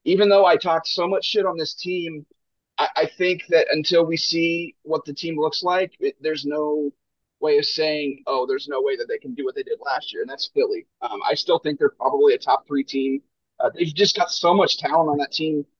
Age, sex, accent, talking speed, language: 30-49, male, American, 240 wpm, English